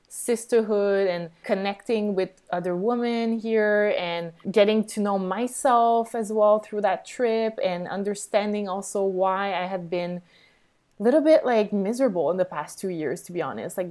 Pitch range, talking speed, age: 175-215 Hz, 165 wpm, 20-39